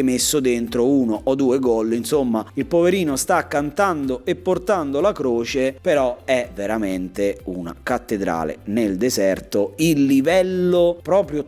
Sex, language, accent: male, Italian, native